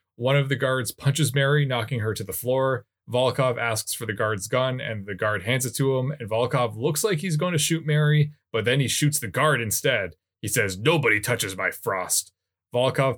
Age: 20-39